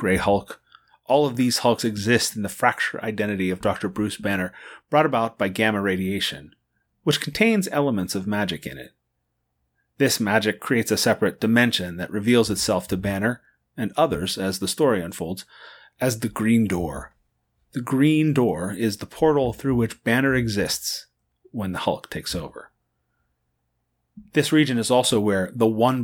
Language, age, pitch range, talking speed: English, 30-49, 95-125 Hz, 160 wpm